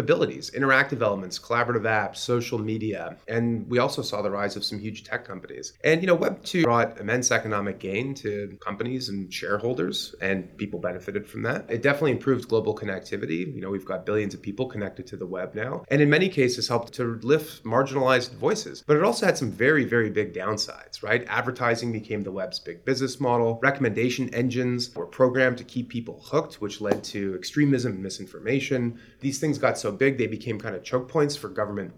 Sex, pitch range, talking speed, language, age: male, 100-125 Hz, 195 wpm, English, 30-49